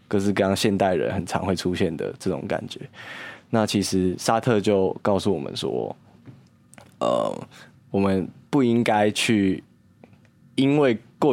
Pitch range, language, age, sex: 100-120 Hz, Chinese, 20-39, male